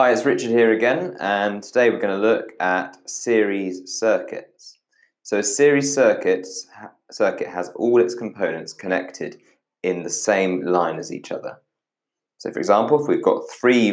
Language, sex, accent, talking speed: English, male, British, 160 wpm